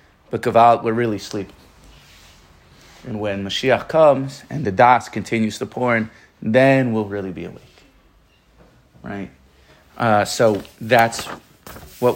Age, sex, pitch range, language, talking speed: 30-49, male, 105-120 Hz, English, 135 wpm